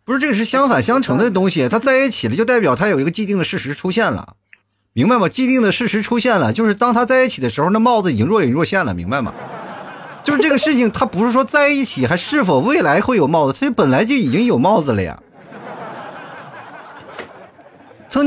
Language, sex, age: Chinese, male, 30-49